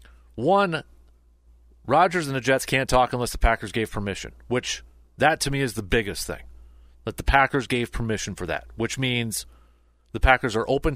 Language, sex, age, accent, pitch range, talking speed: English, male, 40-59, American, 80-130 Hz, 180 wpm